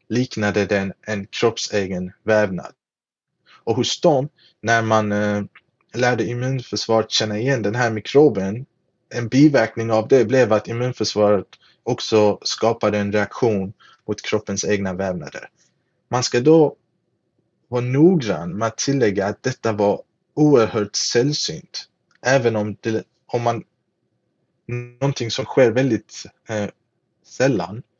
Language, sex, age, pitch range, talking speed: Swedish, male, 30-49, 105-125 Hz, 115 wpm